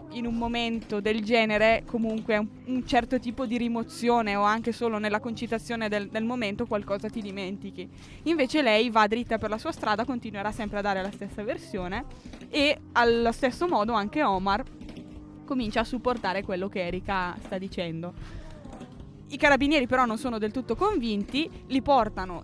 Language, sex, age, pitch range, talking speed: Italian, female, 20-39, 205-250 Hz, 165 wpm